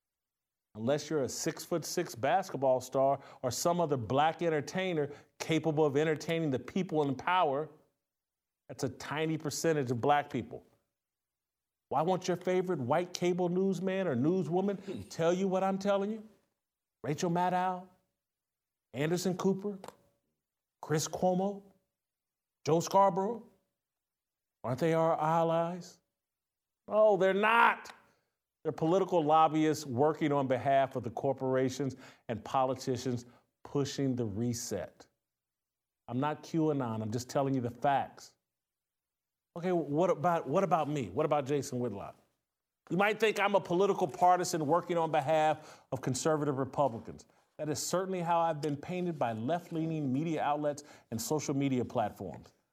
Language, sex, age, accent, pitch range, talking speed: English, male, 50-69, American, 140-180 Hz, 135 wpm